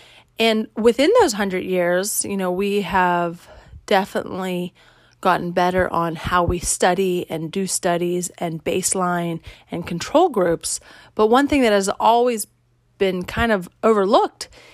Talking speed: 140 wpm